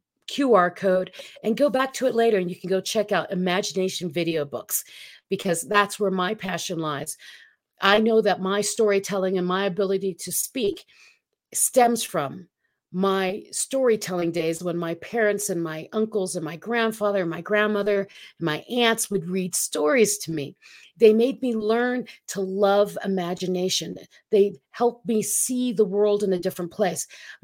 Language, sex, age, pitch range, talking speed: English, female, 40-59, 180-220 Hz, 160 wpm